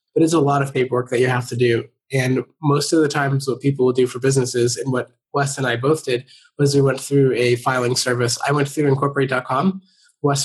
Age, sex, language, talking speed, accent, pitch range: 20-39, male, English, 235 wpm, American, 125-150 Hz